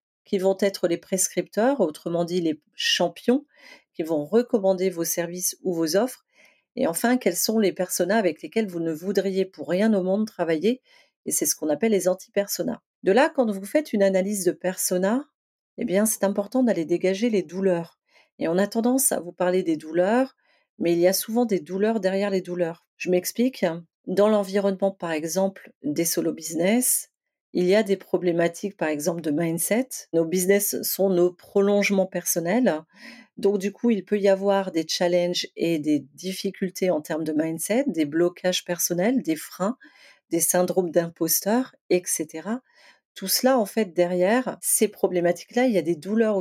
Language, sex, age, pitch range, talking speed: French, female, 40-59, 175-215 Hz, 175 wpm